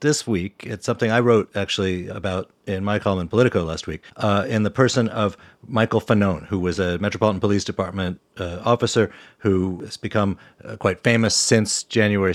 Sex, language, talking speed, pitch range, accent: male, English, 185 wpm, 90-105 Hz, American